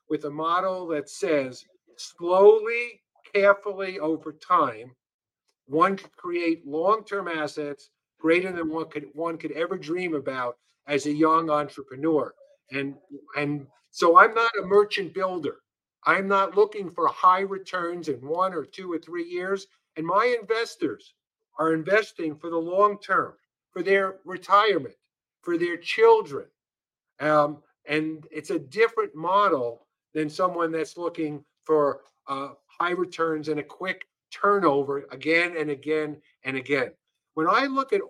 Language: English